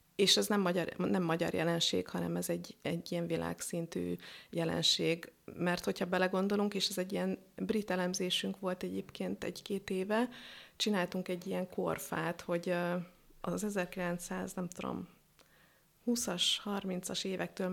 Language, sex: Hungarian, female